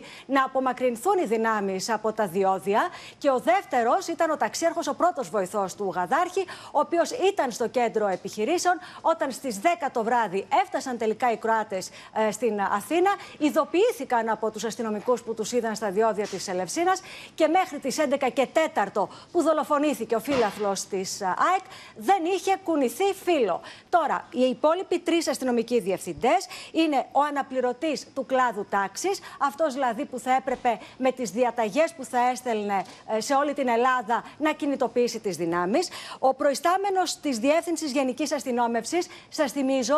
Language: Greek